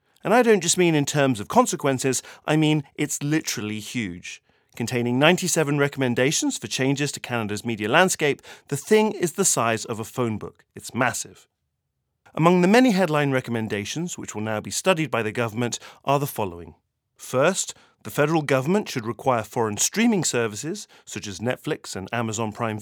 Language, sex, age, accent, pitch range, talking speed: English, male, 40-59, British, 115-160 Hz, 170 wpm